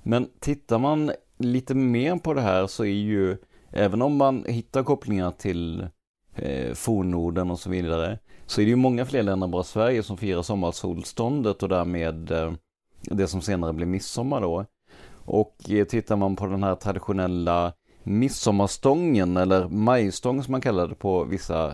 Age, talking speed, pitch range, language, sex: 30-49, 165 wpm, 90-120 Hz, Swedish, male